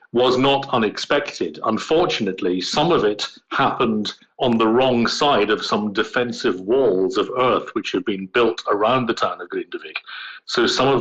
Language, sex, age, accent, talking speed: English, male, 50-69, British, 165 wpm